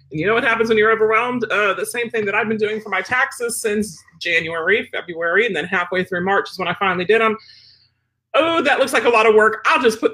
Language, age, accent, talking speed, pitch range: English, 40-59, American, 255 wpm, 195-260 Hz